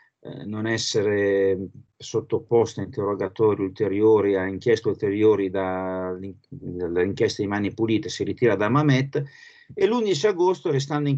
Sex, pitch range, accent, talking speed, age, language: male, 115-150 Hz, native, 120 wpm, 50-69, Italian